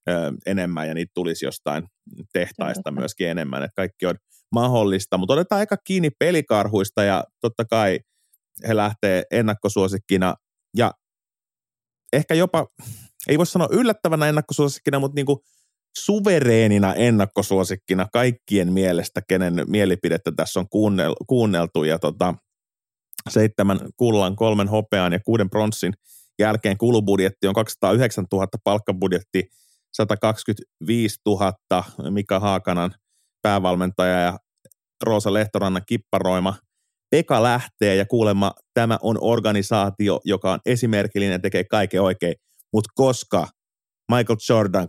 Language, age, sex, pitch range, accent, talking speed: Finnish, 30-49, male, 95-115 Hz, native, 115 wpm